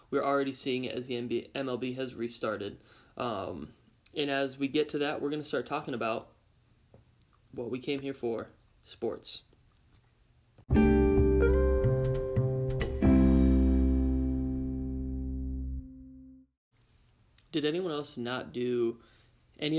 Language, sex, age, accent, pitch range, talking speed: English, male, 20-39, American, 115-140 Hz, 105 wpm